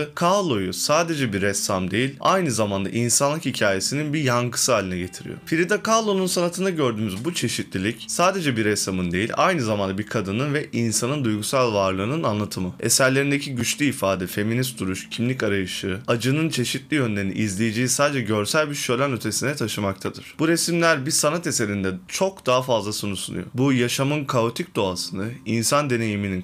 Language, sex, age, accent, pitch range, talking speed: Turkish, male, 20-39, native, 105-145 Hz, 150 wpm